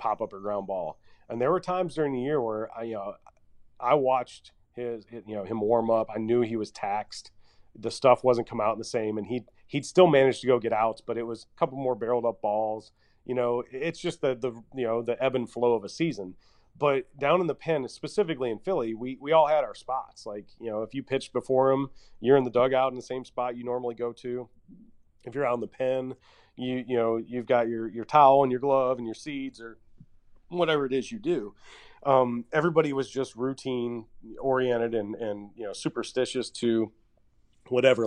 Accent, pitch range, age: American, 115-135 Hz, 30-49